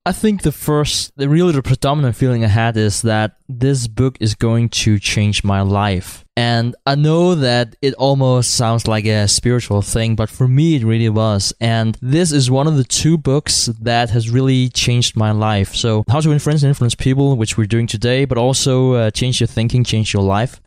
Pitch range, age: 110-140 Hz, 20-39